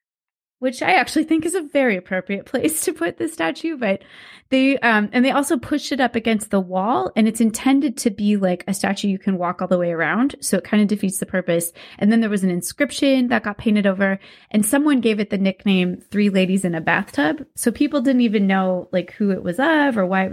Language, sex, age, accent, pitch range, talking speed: English, female, 20-39, American, 185-240 Hz, 240 wpm